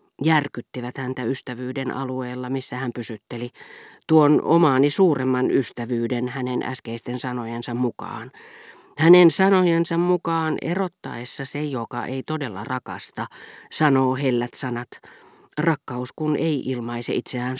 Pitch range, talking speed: 120-165 Hz, 110 wpm